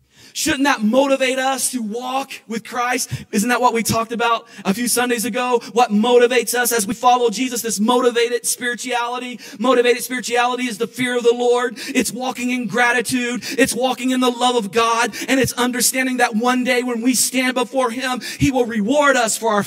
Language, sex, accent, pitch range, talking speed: English, male, American, 210-255 Hz, 195 wpm